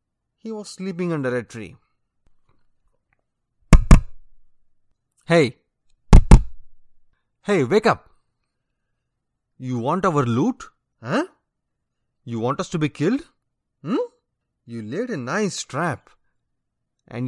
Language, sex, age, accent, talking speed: English, male, 30-49, Indian, 100 wpm